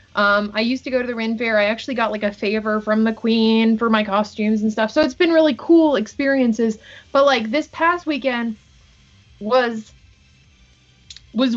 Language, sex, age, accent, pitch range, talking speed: English, female, 20-39, American, 215-280 Hz, 185 wpm